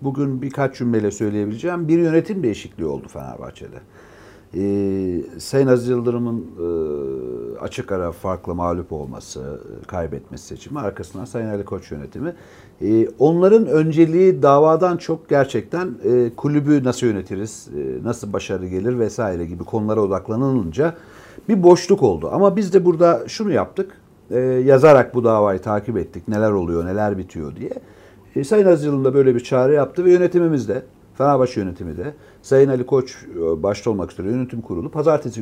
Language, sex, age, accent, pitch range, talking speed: Turkish, male, 60-79, native, 100-150 Hz, 135 wpm